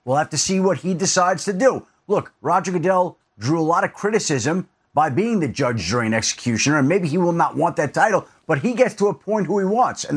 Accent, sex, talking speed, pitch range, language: American, male, 240 wpm, 165-225 Hz, English